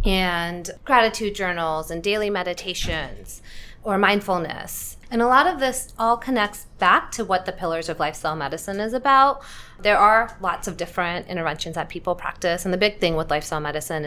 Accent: American